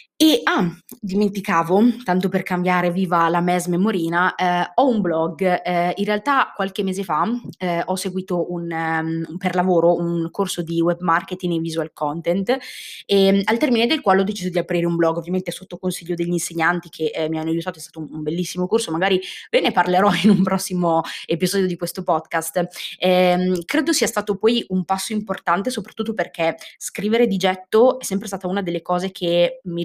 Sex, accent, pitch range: female, native, 170-195 Hz